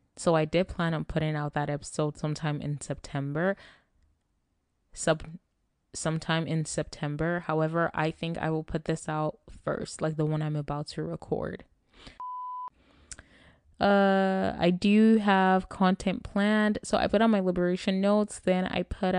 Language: English